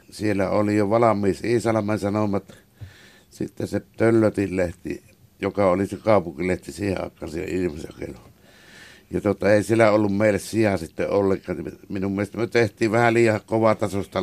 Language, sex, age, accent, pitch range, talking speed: Finnish, male, 60-79, native, 95-110 Hz, 145 wpm